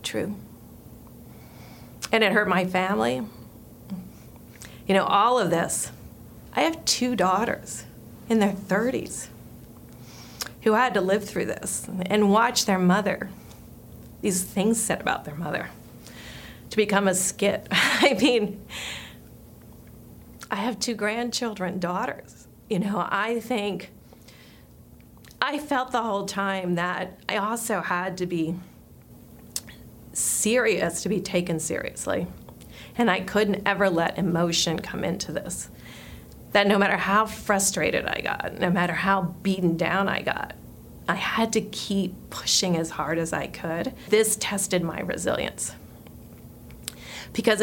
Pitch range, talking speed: 185-215 Hz, 130 wpm